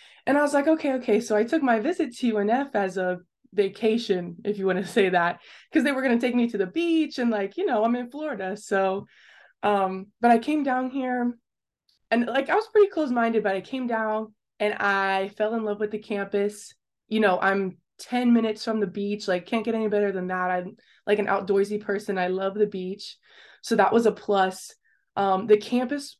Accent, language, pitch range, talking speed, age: American, English, 200-250 Hz, 220 wpm, 20-39